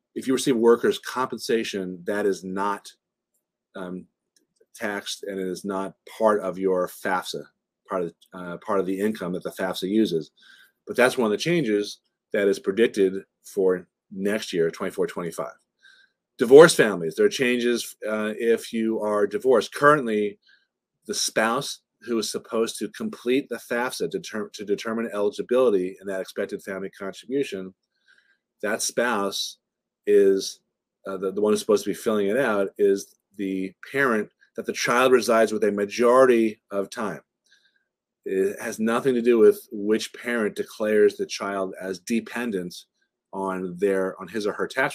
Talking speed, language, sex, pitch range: 160 wpm, English, male, 95-130 Hz